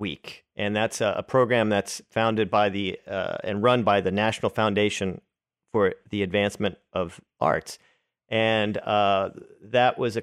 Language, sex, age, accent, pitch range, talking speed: English, male, 40-59, American, 100-115 Hz, 155 wpm